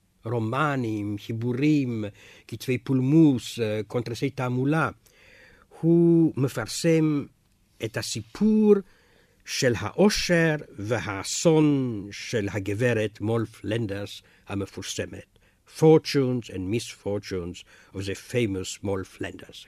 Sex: male